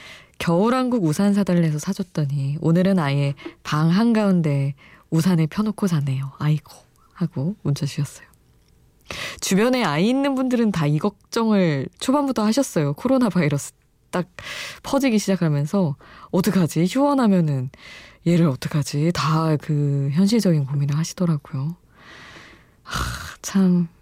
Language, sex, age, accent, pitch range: Korean, female, 20-39, native, 140-190 Hz